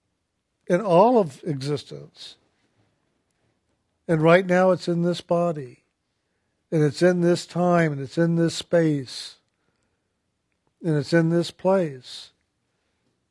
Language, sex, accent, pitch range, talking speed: English, male, American, 155-180 Hz, 115 wpm